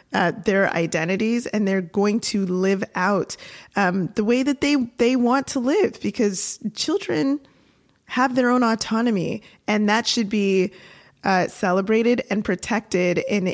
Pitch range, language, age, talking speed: 185-225 Hz, English, 20-39, 150 wpm